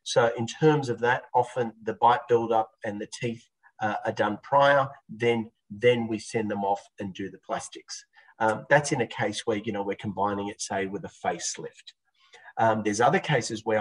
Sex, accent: male, Australian